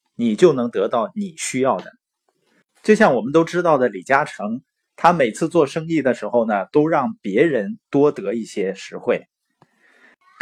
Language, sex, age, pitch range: Chinese, male, 20-39, 130-205 Hz